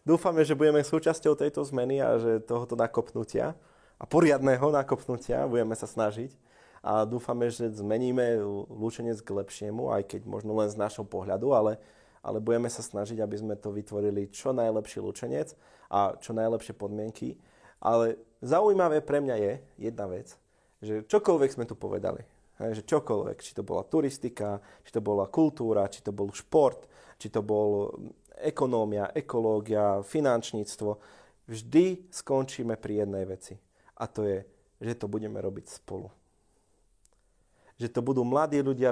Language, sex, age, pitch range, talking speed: Slovak, male, 30-49, 105-125 Hz, 150 wpm